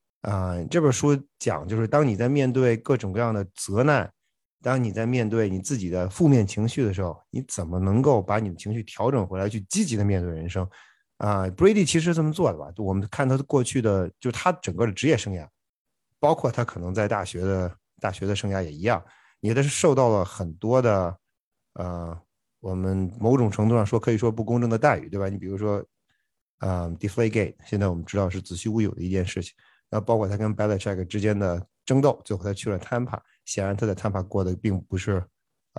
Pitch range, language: 95-125 Hz, Chinese